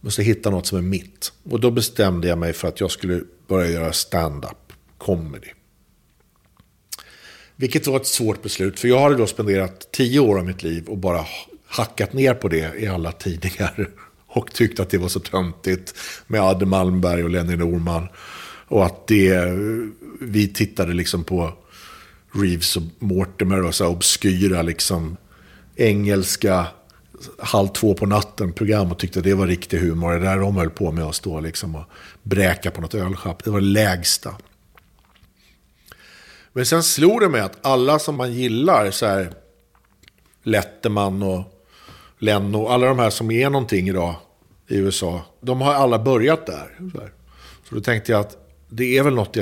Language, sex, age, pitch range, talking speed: English, male, 50-69, 90-110 Hz, 170 wpm